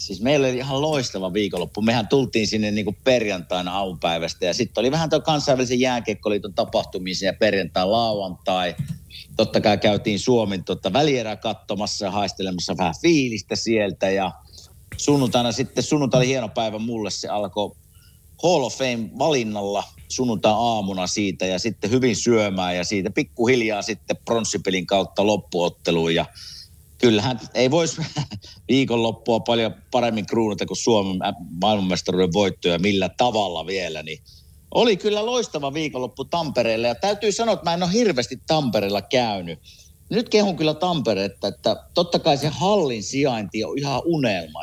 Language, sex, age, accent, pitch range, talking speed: Finnish, male, 50-69, native, 100-135 Hz, 140 wpm